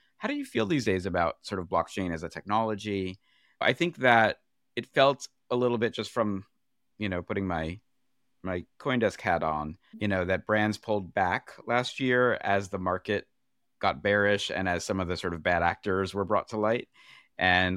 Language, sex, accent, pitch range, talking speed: English, male, American, 95-110 Hz, 195 wpm